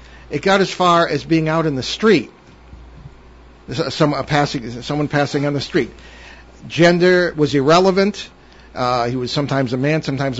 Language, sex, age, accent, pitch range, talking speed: English, male, 50-69, American, 125-160 Hz, 145 wpm